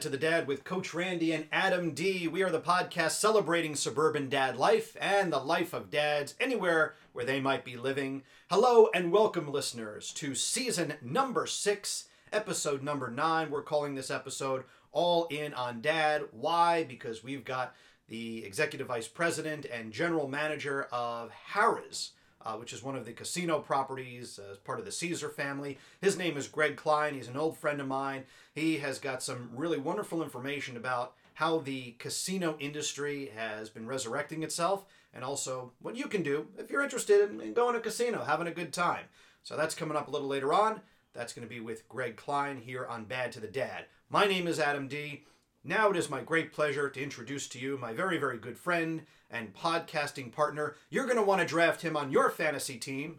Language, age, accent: English, 40-59, American